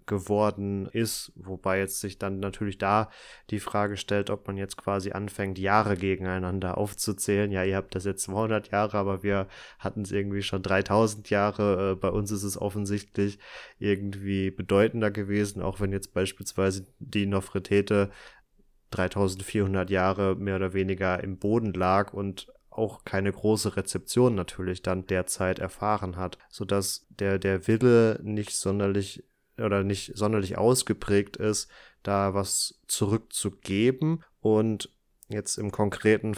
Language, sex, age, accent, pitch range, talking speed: German, male, 20-39, German, 95-105 Hz, 140 wpm